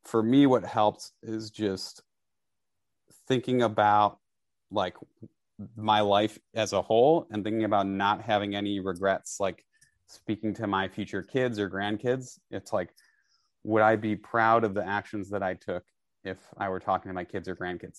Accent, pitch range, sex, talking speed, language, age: American, 95-110 Hz, male, 165 wpm, English, 30-49